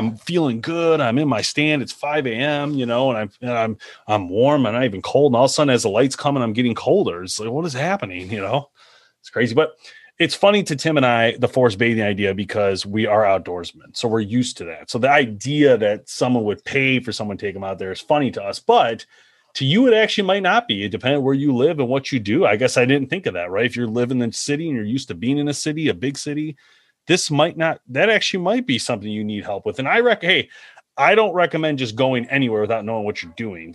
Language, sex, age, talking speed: English, male, 30-49, 270 wpm